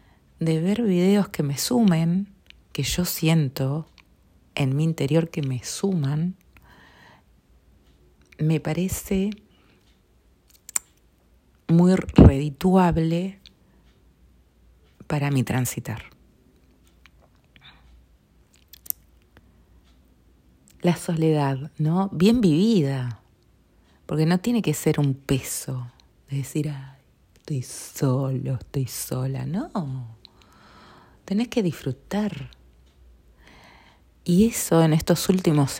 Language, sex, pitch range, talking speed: Spanish, female, 115-160 Hz, 80 wpm